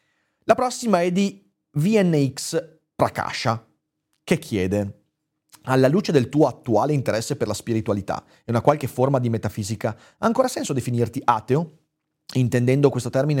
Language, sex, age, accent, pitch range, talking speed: Italian, male, 30-49, native, 110-145 Hz, 140 wpm